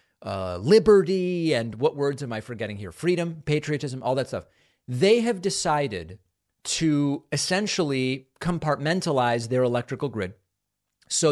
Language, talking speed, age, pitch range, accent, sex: English, 125 wpm, 30-49, 120-160 Hz, American, male